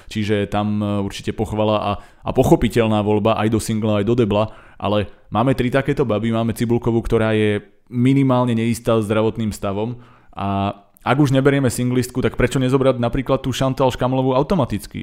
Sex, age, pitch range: male, 30-49, 105-120 Hz